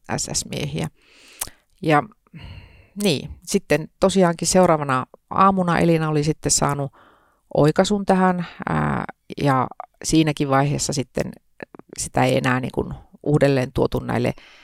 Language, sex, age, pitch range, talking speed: Finnish, female, 30-49, 140-175 Hz, 105 wpm